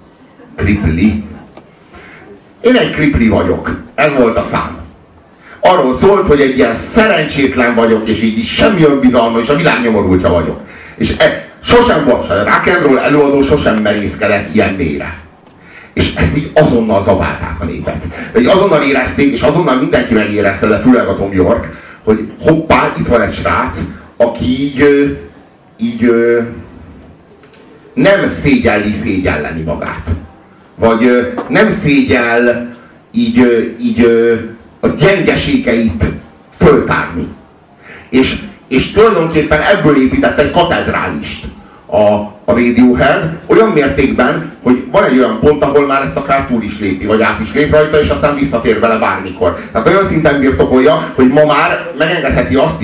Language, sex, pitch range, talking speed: Hungarian, male, 105-145 Hz, 140 wpm